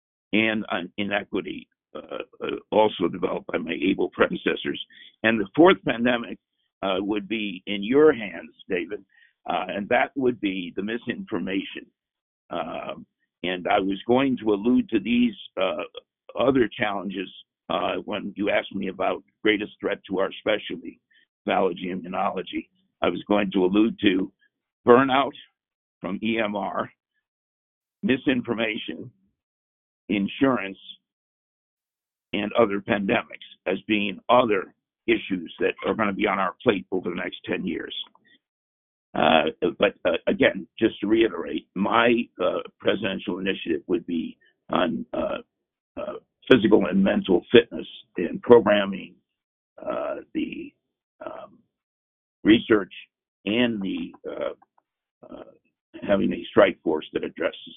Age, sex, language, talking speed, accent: 60-79, male, English, 125 wpm, American